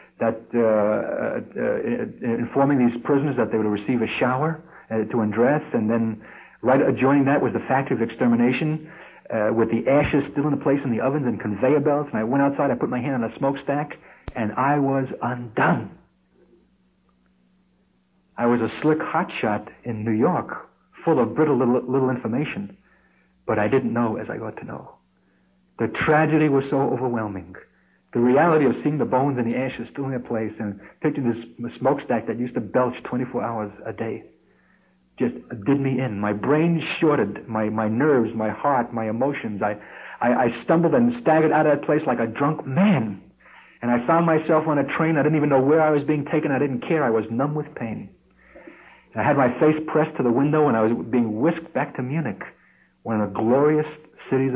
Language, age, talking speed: English, 60-79, 200 wpm